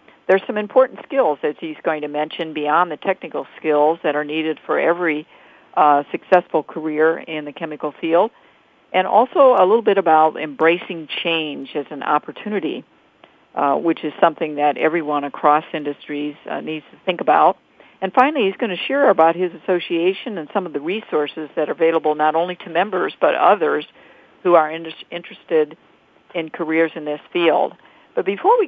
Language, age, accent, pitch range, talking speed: English, 50-69, American, 155-200 Hz, 175 wpm